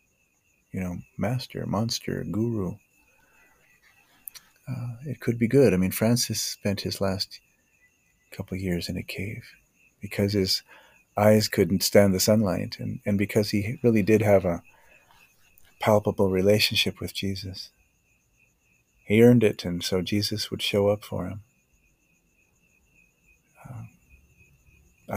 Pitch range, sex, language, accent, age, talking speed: 95-115 Hz, male, English, American, 40-59, 125 wpm